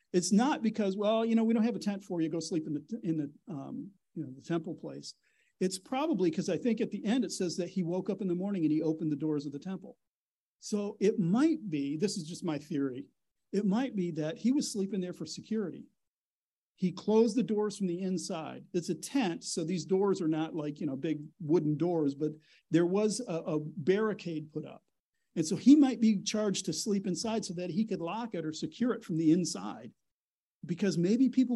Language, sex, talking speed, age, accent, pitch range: English, male, 230 wpm, 50-69, American, 165-215 Hz